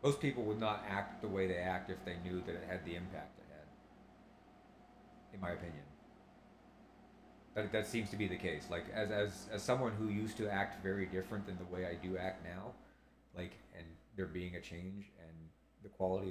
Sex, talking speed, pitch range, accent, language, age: male, 205 wpm, 85-100 Hz, American, English, 40-59